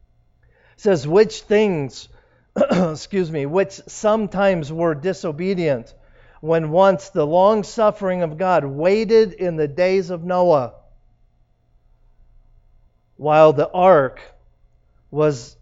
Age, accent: 40-59, American